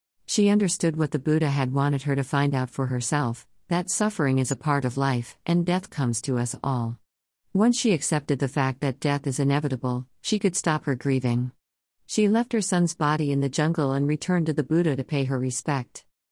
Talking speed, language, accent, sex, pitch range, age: 210 wpm, English, American, female, 130-165 Hz, 50-69